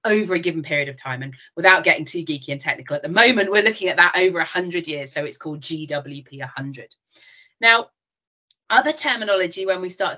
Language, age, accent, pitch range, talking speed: English, 30-49, British, 175-235 Hz, 205 wpm